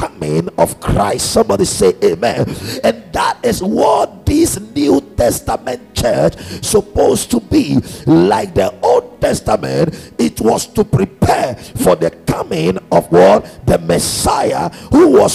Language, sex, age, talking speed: English, male, 50-69, 130 wpm